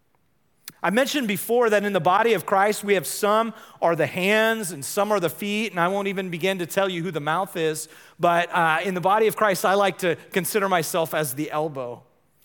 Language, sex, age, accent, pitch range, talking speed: English, male, 40-59, American, 165-215 Hz, 225 wpm